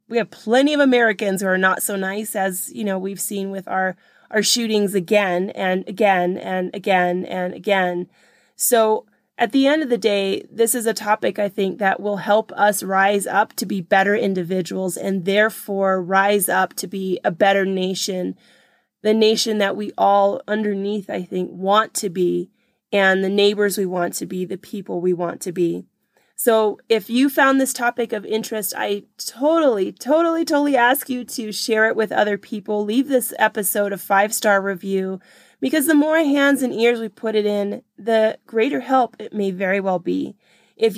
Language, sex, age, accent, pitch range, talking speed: English, female, 20-39, American, 190-230 Hz, 185 wpm